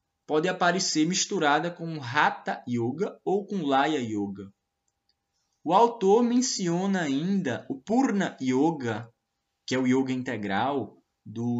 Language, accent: Portuguese, Brazilian